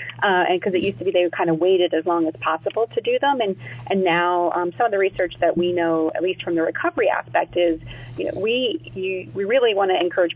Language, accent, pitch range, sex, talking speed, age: English, American, 165-195 Hz, female, 265 wpm, 30-49